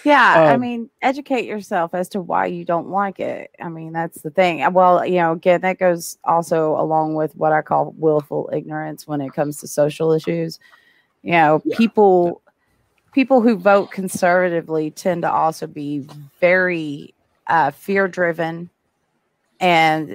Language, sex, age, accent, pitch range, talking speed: English, female, 30-49, American, 150-185 Hz, 155 wpm